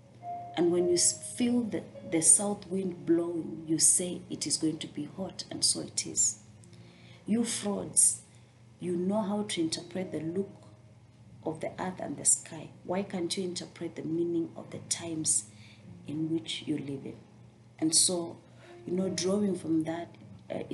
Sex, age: female, 30-49